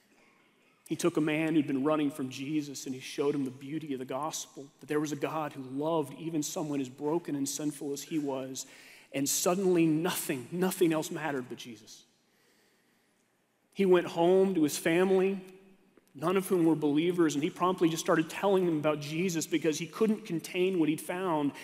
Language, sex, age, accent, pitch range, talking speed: English, male, 30-49, American, 155-210 Hz, 190 wpm